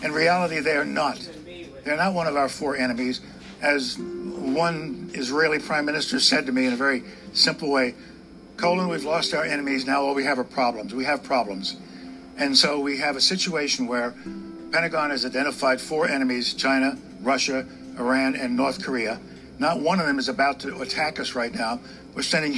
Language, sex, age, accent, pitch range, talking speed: English, male, 60-79, American, 130-185 Hz, 185 wpm